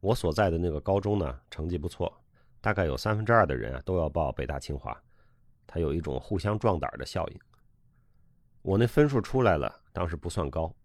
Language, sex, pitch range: Chinese, male, 80-110 Hz